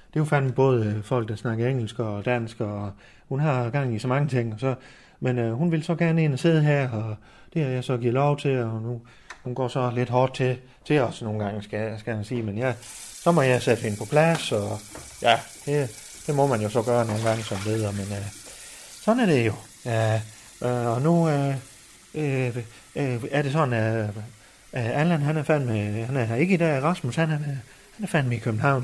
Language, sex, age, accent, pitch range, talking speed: Danish, male, 30-49, native, 110-145 Hz, 235 wpm